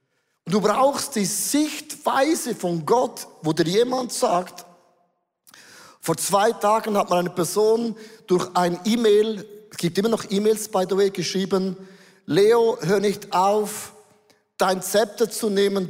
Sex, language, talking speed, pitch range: male, German, 140 wpm, 175-230 Hz